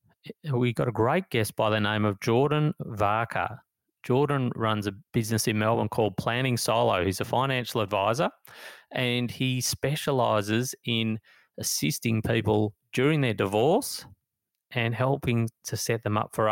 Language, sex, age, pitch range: English, male, 30-49, 105-120 Hz